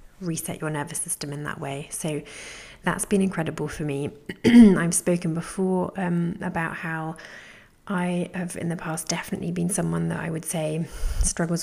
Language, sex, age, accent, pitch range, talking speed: English, female, 30-49, British, 160-185 Hz, 165 wpm